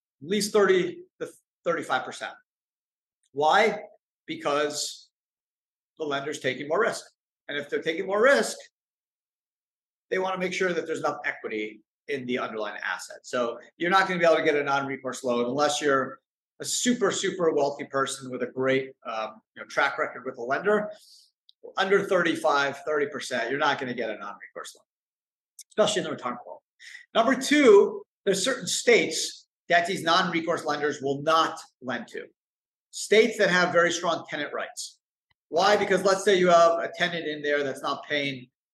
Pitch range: 140-210 Hz